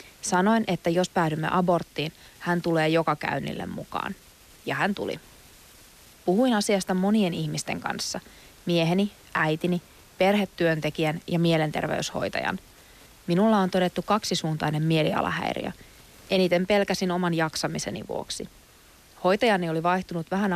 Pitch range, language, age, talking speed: 165-195 Hz, Finnish, 30-49, 110 wpm